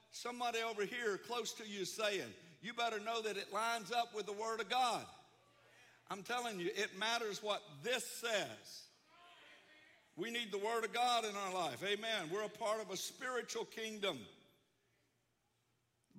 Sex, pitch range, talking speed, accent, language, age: male, 180-215 Hz, 165 wpm, American, English, 60-79